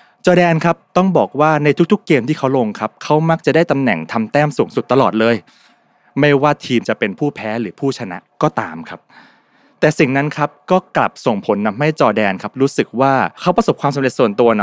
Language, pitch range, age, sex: Thai, 115-155 Hz, 20-39, male